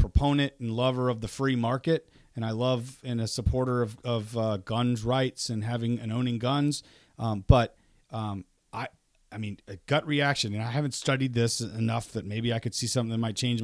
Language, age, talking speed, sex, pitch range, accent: English, 40-59, 205 wpm, male, 115-150 Hz, American